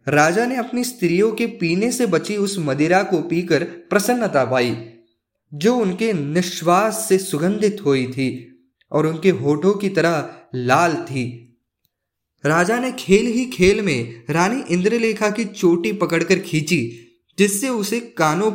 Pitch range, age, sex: 145-210 Hz, 20-39, male